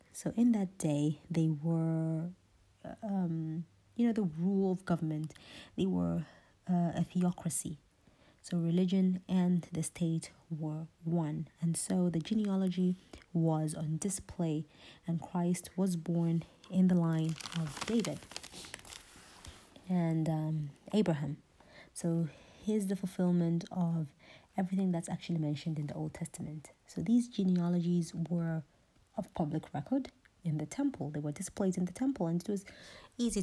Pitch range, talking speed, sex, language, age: 160-185 Hz, 140 wpm, female, English, 30-49